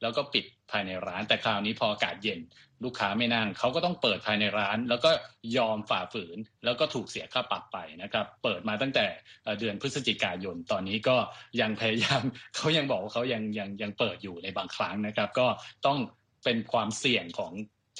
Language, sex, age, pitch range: Thai, male, 20-39, 110-140 Hz